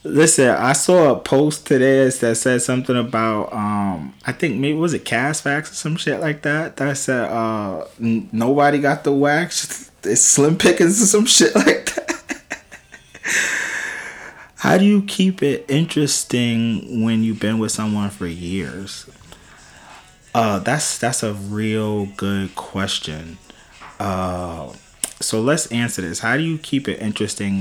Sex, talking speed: male, 150 wpm